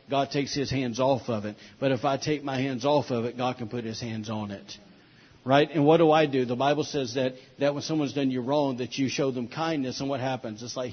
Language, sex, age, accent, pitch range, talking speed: English, male, 50-69, American, 120-145 Hz, 270 wpm